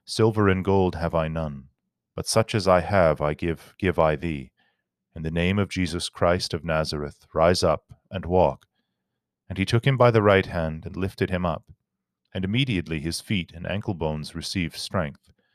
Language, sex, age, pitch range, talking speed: English, male, 30-49, 85-100 Hz, 190 wpm